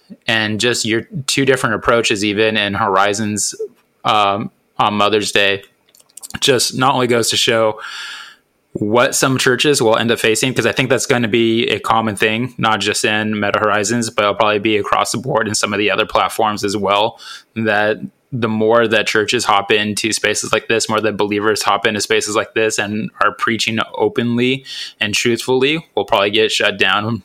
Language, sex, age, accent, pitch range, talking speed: English, male, 20-39, American, 105-125 Hz, 185 wpm